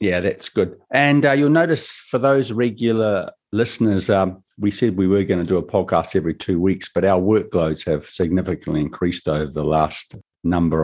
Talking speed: 190 wpm